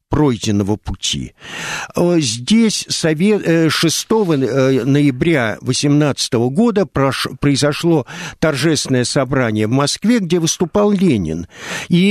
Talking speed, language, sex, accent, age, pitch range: 80 wpm, Russian, male, native, 50-69, 135-195 Hz